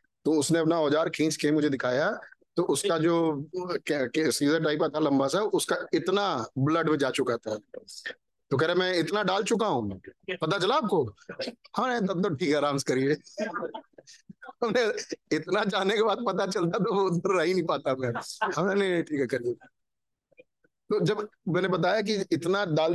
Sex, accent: male, native